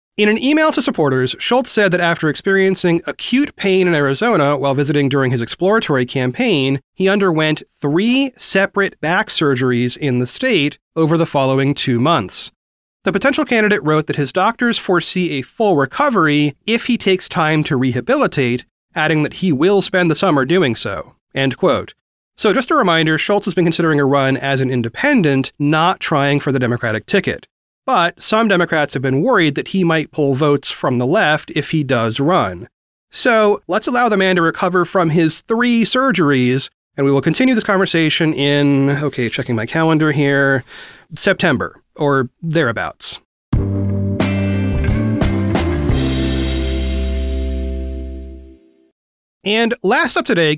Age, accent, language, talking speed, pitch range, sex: 30-49, American, English, 155 wpm, 130-190 Hz, male